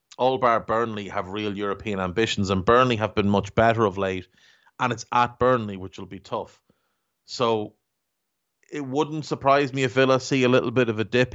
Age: 30-49